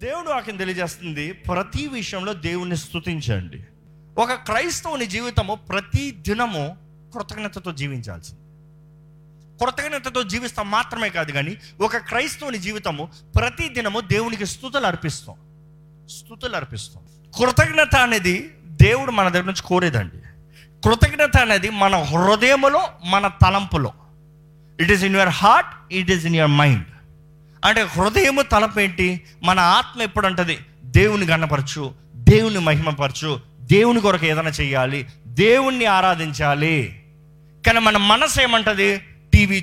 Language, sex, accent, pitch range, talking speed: Telugu, male, native, 155-210 Hz, 110 wpm